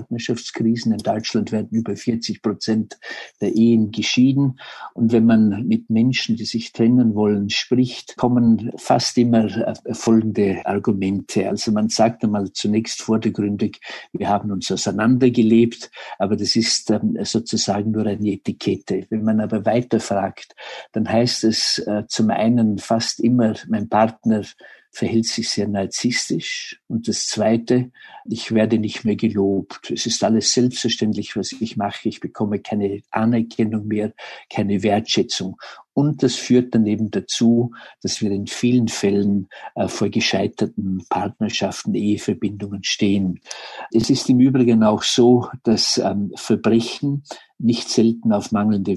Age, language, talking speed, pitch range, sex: 50-69, German, 130 wpm, 105-120 Hz, male